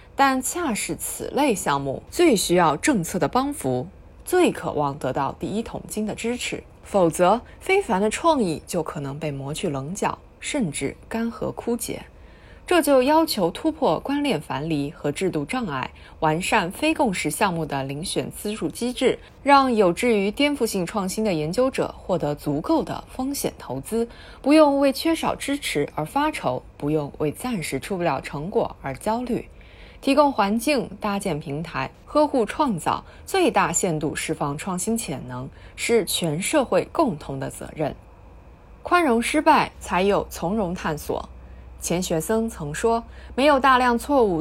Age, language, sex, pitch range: 20-39, Chinese, female, 155-250 Hz